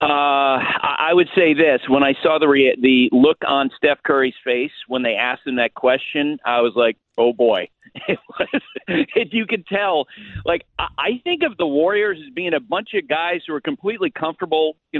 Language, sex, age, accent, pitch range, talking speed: English, male, 50-69, American, 150-225 Hz, 190 wpm